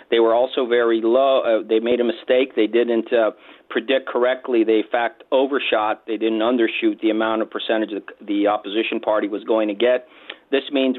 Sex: male